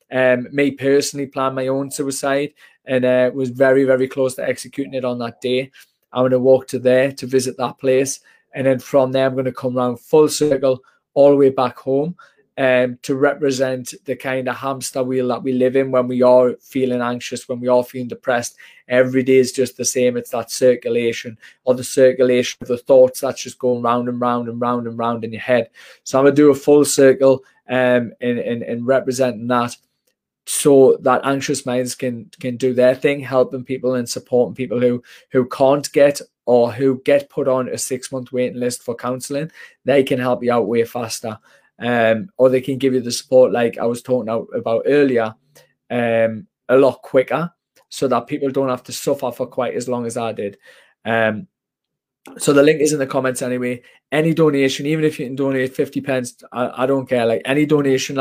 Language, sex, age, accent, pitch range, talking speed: English, male, 20-39, British, 125-135 Hz, 210 wpm